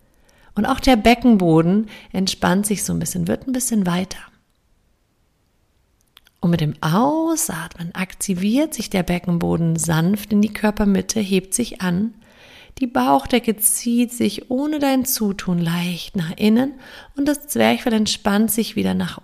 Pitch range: 170-215 Hz